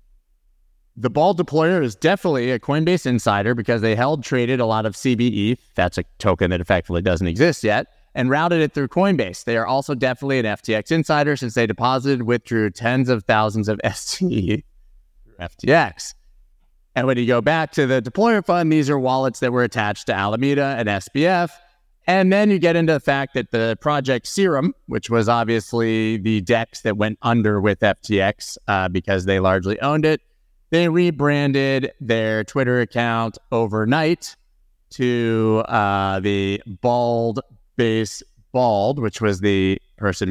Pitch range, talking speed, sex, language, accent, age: 110-140 Hz, 160 wpm, male, English, American, 30-49